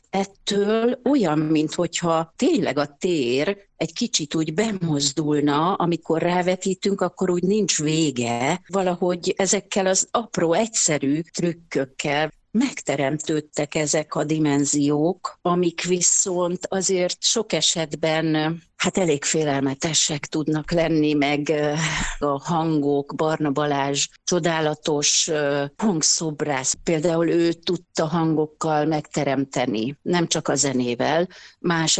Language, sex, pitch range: Hungarian, female, 145-175 Hz